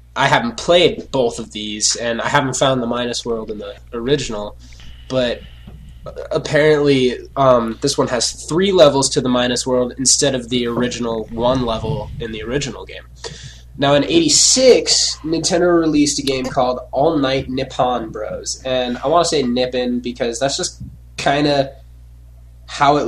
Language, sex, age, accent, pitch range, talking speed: English, male, 10-29, American, 115-150 Hz, 165 wpm